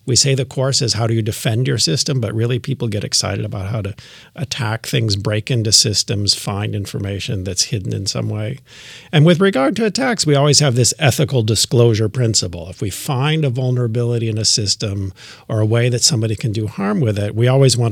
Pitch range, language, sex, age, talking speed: 110-135 Hz, English, male, 50-69, 215 wpm